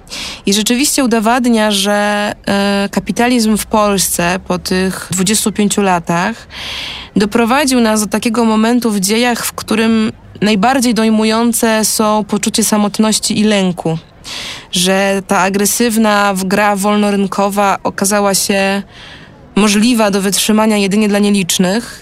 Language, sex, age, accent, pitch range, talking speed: Polish, female, 20-39, native, 200-235 Hz, 110 wpm